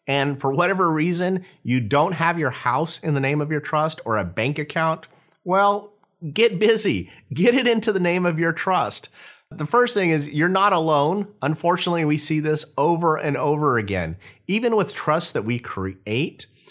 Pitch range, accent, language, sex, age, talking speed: 125-170 Hz, American, English, male, 30-49, 185 wpm